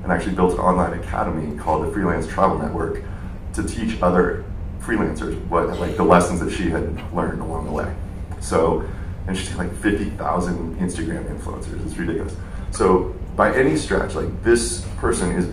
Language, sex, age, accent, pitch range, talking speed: English, male, 30-49, American, 85-95 Hz, 165 wpm